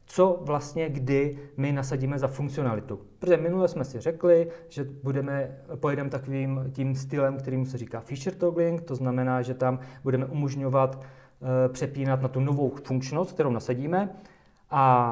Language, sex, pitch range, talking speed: Czech, male, 130-150 Hz, 150 wpm